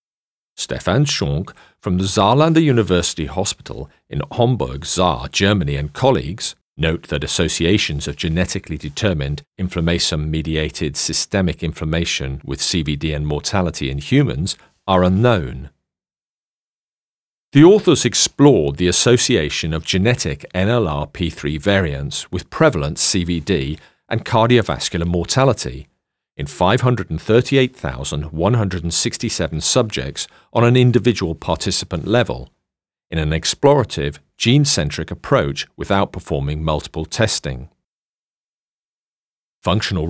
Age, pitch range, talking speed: 40-59, 75-100 Hz, 95 wpm